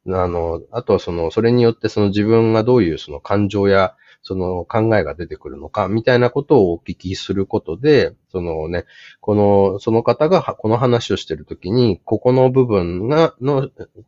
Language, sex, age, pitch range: Japanese, male, 30-49, 95-125 Hz